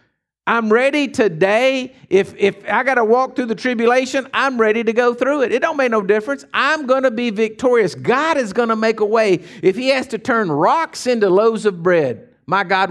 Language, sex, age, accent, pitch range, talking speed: English, male, 50-69, American, 135-200 Hz, 220 wpm